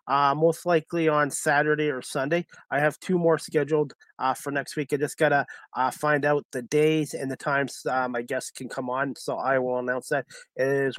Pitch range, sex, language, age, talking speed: 140-165 Hz, male, English, 30-49, 215 wpm